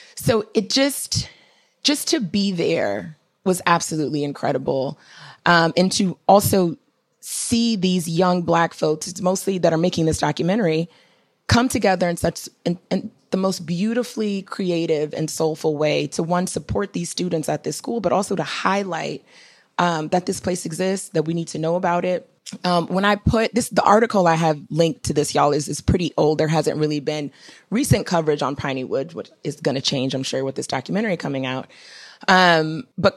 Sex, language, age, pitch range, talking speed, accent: female, English, 20-39, 155-190 Hz, 185 wpm, American